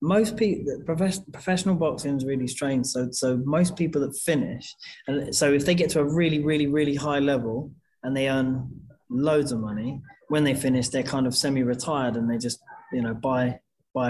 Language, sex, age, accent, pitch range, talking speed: English, male, 20-39, British, 130-150 Hz, 190 wpm